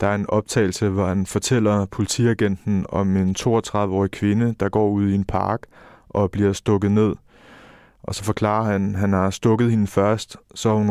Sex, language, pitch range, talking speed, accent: male, Danish, 95-105 Hz, 195 wpm, native